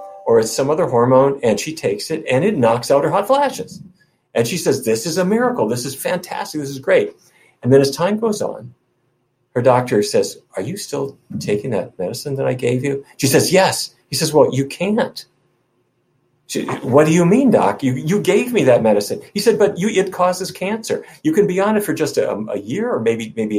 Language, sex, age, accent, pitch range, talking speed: English, male, 50-69, American, 120-190 Hz, 220 wpm